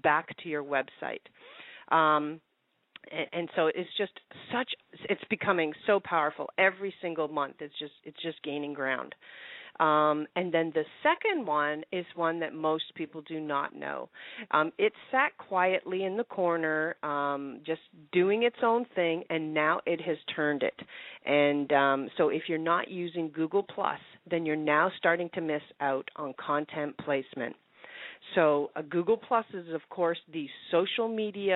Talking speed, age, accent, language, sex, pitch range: 165 wpm, 40-59, American, English, female, 150-180 Hz